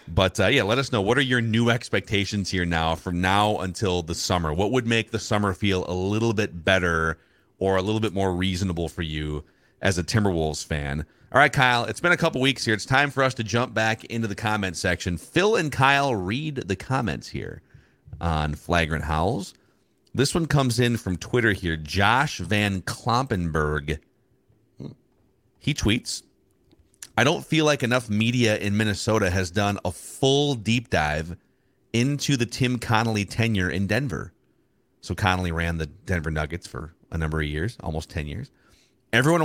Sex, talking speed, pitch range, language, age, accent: male, 180 wpm, 90-120 Hz, English, 30-49, American